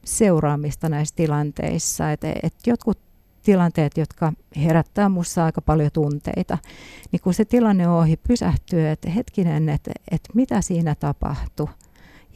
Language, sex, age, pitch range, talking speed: Finnish, female, 50-69, 150-185 Hz, 125 wpm